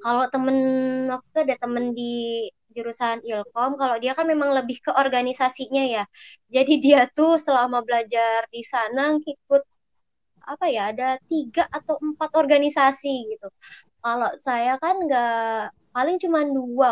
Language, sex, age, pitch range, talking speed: Indonesian, male, 20-39, 235-285 Hz, 140 wpm